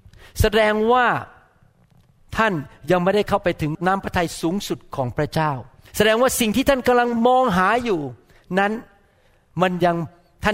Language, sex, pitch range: Thai, male, 155-200 Hz